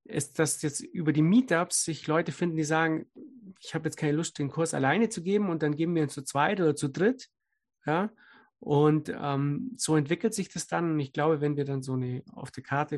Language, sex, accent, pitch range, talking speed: German, male, German, 140-160 Hz, 230 wpm